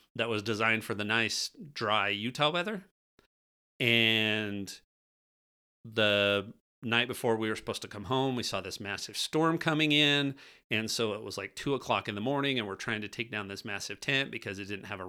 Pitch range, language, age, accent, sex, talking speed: 100-125 Hz, English, 40-59, American, male, 200 wpm